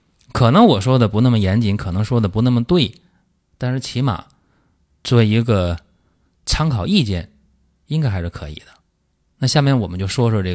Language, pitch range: Chinese, 90-135 Hz